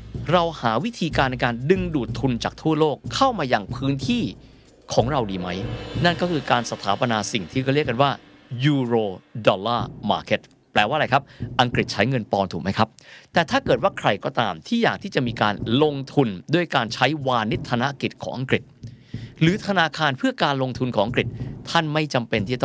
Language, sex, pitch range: Thai, male, 115-155 Hz